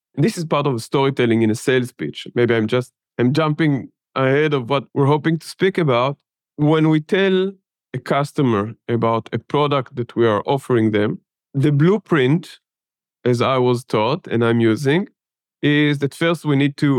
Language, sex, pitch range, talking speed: English, male, 120-155 Hz, 175 wpm